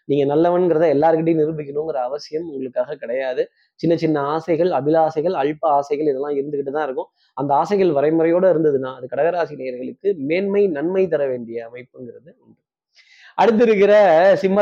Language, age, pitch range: Tamil, 20-39, 145-185 Hz